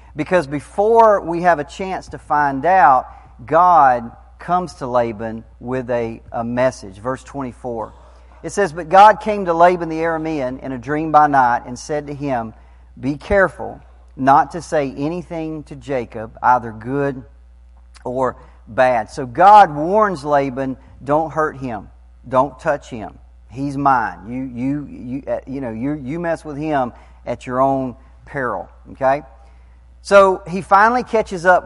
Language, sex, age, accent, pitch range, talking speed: English, male, 40-59, American, 125-170 Hz, 155 wpm